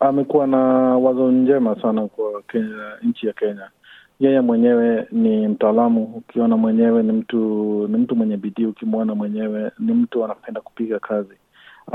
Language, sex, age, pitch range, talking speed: Swahili, male, 30-49, 115-130 Hz, 155 wpm